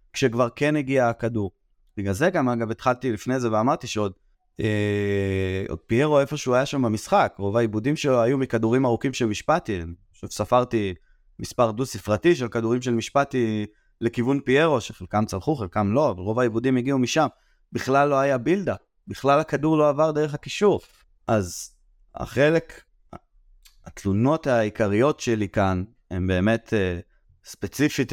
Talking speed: 145 wpm